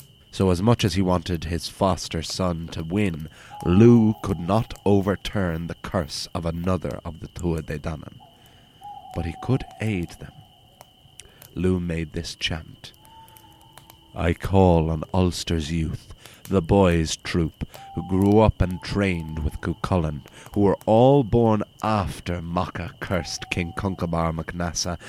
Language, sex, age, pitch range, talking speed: English, male, 30-49, 85-110 Hz, 140 wpm